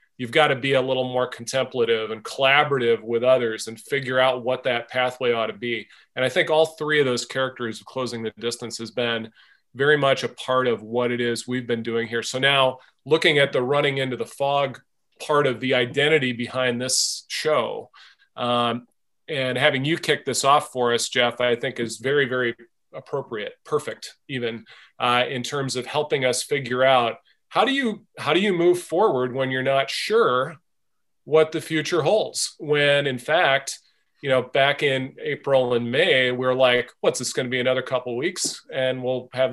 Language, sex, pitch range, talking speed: English, male, 125-150 Hz, 195 wpm